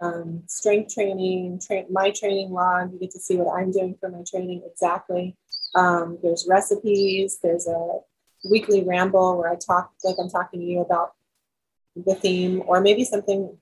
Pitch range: 175-190 Hz